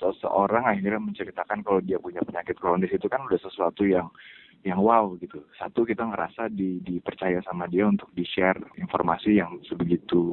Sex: male